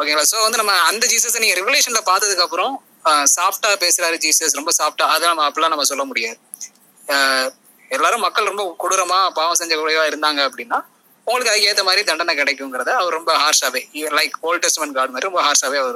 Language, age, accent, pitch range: Tamil, 20-39, native, 160-225 Hz